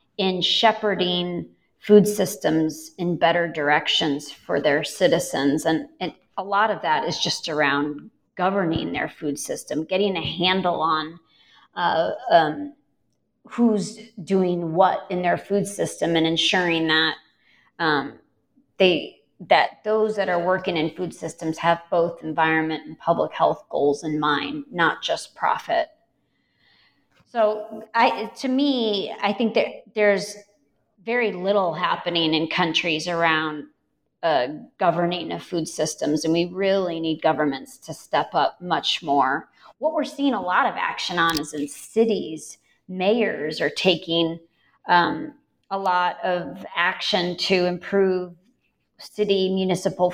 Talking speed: 135 wpm